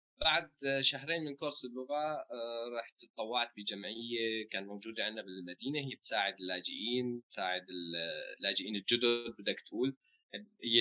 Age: 20-39